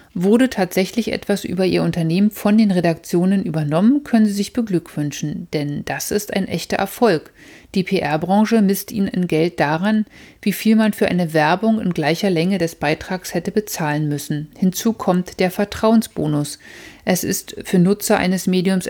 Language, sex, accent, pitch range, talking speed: German, female, German, 165-205 Hz, 160 wpm